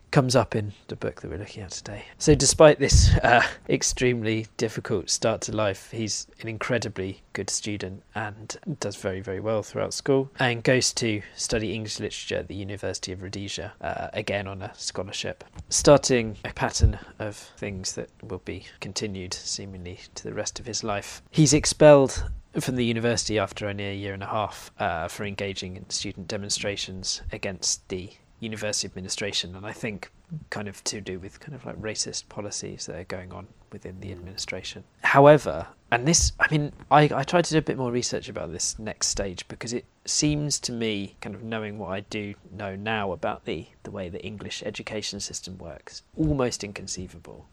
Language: English